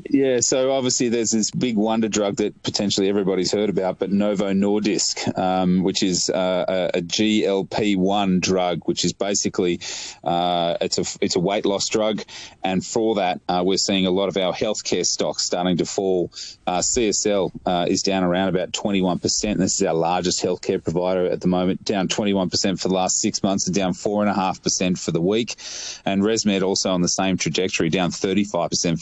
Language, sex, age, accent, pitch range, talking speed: English, male, 30-49, Australian, 90-105 Hz, 180 wpm